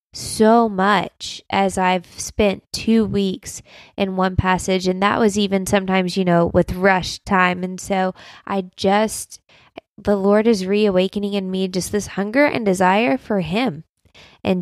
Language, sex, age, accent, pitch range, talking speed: English, female, 20-39, American, 185-215 Hz, 155 wpm